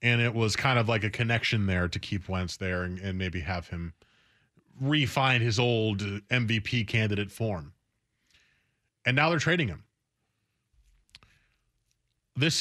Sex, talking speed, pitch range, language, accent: male, 145 wpm, 110-140 Hz, English, American